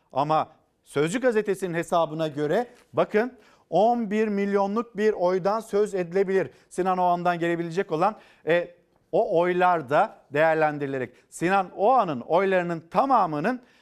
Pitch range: 160-200 Hz